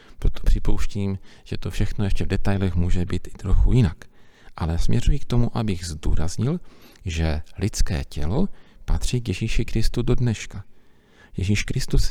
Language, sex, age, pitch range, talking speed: Czech, male, 40-59, 85-115 Hz, 150 wpm